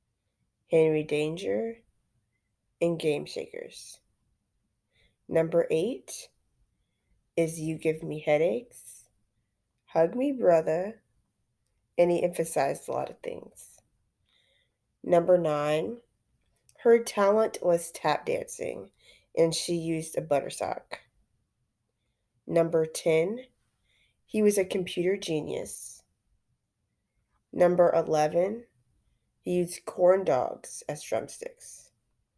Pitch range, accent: 115-175 Hz, American